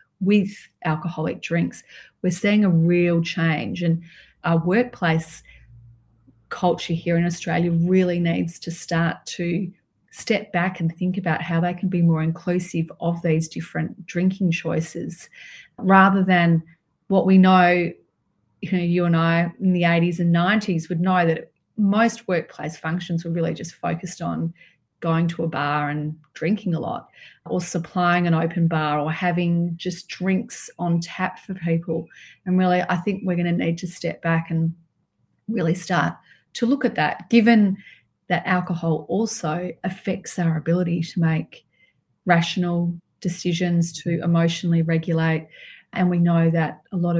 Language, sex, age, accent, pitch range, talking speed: English, female, 30-49, Australian, 165-180 Hz, 155 wpm